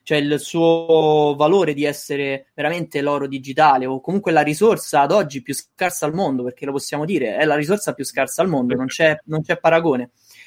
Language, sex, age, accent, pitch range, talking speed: Italian, male, 20-39, native, 150-190 Hz, 200 wpm